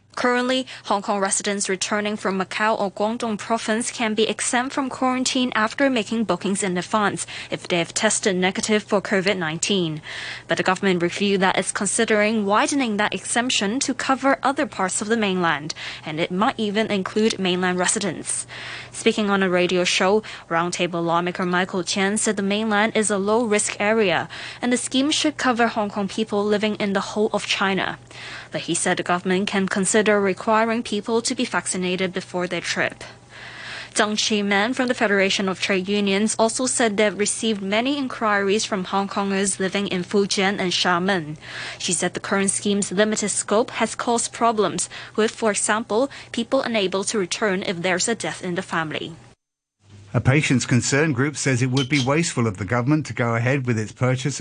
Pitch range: 165-220 Hz